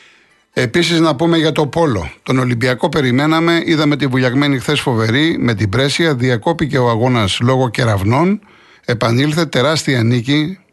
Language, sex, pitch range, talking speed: Greek, male, 115-150 Hz, 140 wpm